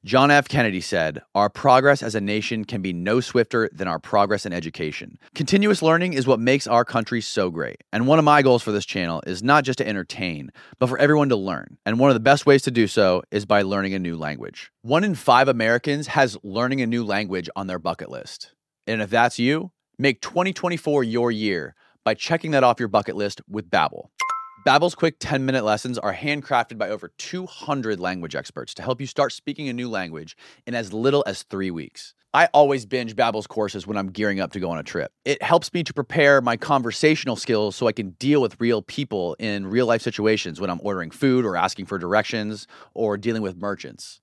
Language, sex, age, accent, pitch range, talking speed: English, male, 30-49, American, 100-140 Hz, 215 wpm